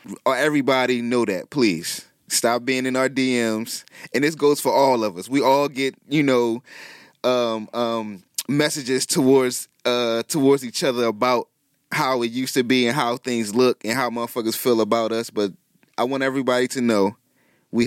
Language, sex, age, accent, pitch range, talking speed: English, male, 20-39, American, 115-155 Hz, 175 wpm